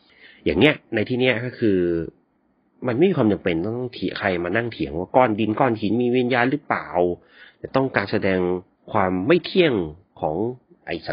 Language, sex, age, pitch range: Thai, male, 30-49, 85-110 Hz